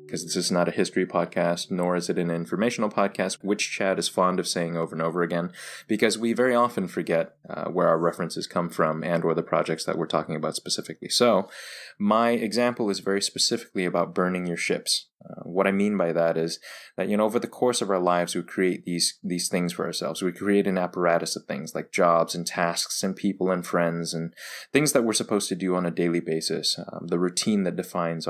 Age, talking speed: 20-39, 225 wpm